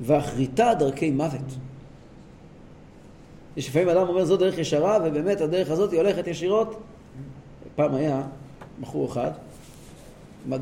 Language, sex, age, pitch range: Hebrew, male, 40-59, 130-160 Hz